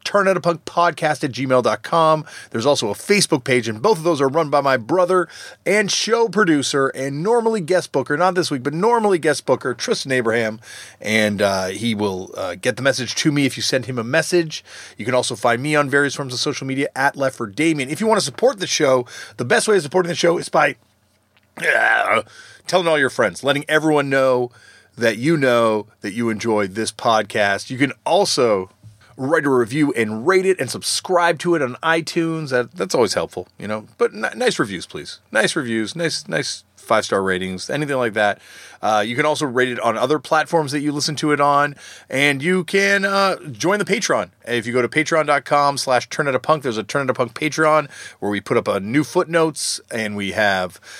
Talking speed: 200 wpm